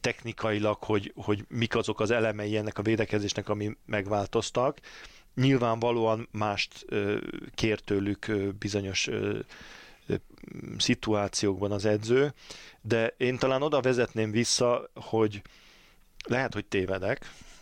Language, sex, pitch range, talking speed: Hungarian, male, 100-115 Hz, 100 wpm